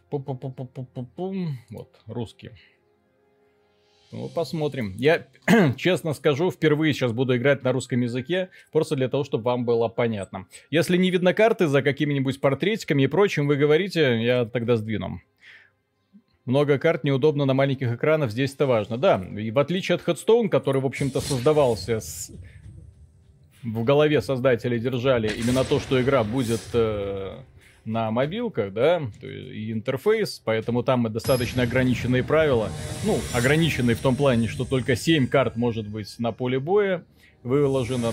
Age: 30-49